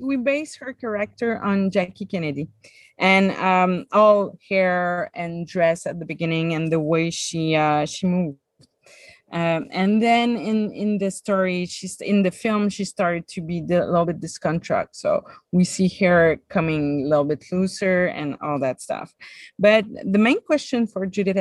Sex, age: female, 30-49